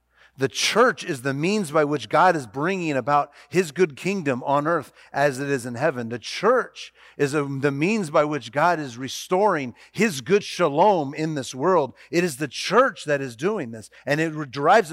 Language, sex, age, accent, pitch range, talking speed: English, male, 40-59, American, 145-200 Hz, 195 wpm